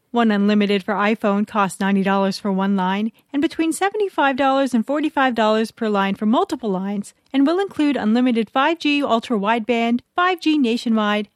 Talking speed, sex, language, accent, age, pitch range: 145 wpm, female, English, American, 30-49, 205-275 Hz